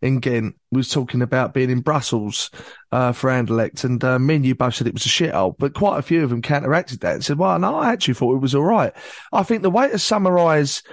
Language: English